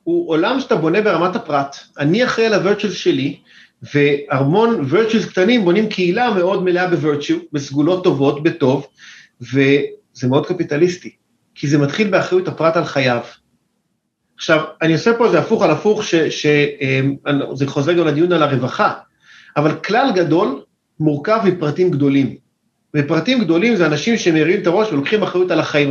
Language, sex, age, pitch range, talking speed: Hebrew, male, 40-59, 150-215 Hz, 150 wpm